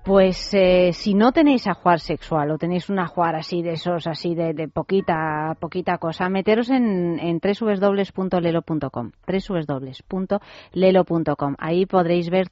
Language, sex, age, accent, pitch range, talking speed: Spanish, female, 30-49, Spanish, 160-190 Hz, 140 wpm